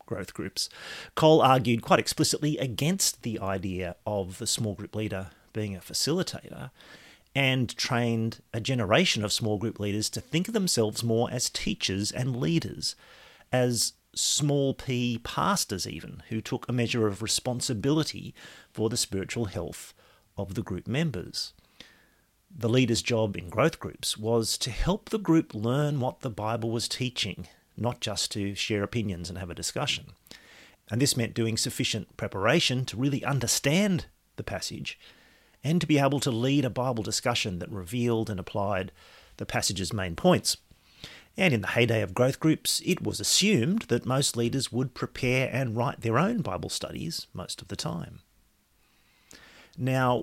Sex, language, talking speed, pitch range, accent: male, English, 160 wpm, 105-135 Hz, Australian